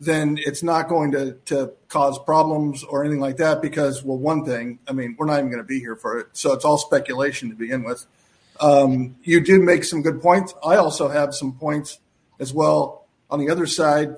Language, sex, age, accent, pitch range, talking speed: English, male, 50-69, American, 135-160 Hz, 220 wpm